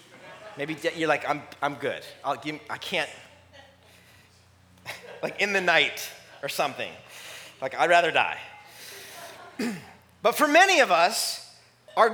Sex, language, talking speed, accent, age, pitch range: male, English, 130 wpm, American, 30-49, 165-240 Hz